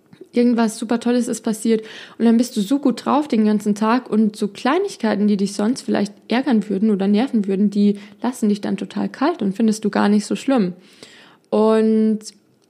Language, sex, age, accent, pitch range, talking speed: German, female, 20-39, German, 200-230 Hz, 195 wpm